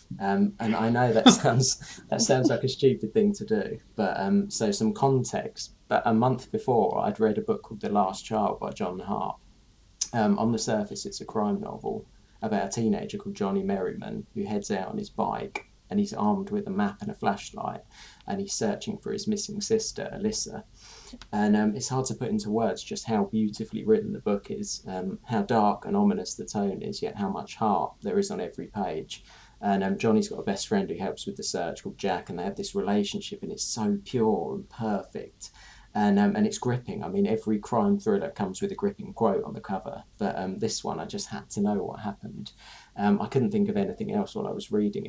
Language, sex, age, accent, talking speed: English, male, 20-39, British, 225 wpm